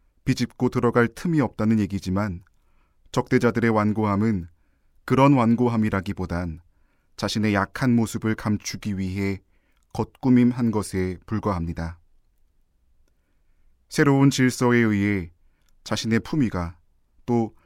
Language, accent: Korean, native